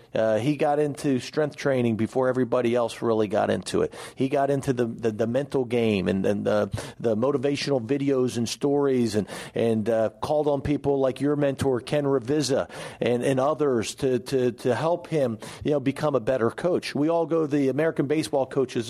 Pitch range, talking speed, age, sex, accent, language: 120-145 Hz, 195 wpm, 40-59, male, American, English